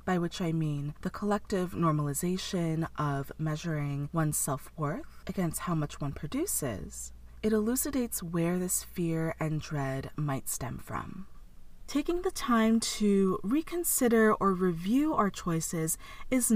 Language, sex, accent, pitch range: English, female, American, 165-225 Hz